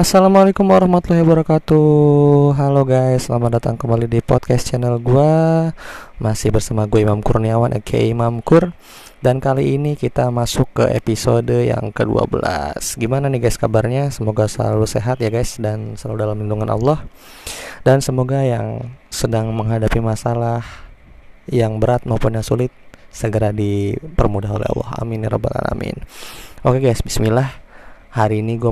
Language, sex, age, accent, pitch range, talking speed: Indonesian, male, 20-39, native, 110-130 Hz, 145 wpm